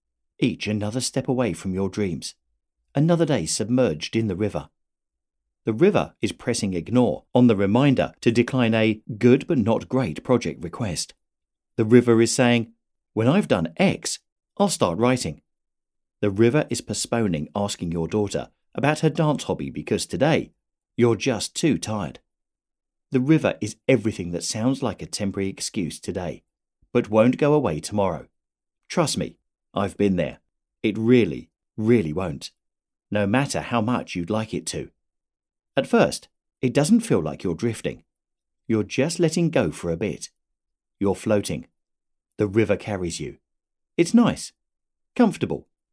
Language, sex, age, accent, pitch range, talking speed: English, male, 40-59, British, 95-130 Hz, 145 wpm